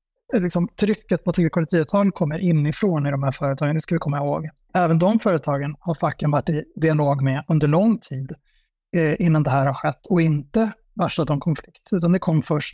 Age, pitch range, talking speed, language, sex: 30-49, 155-180 Hz, 200 wpm, Swedish, male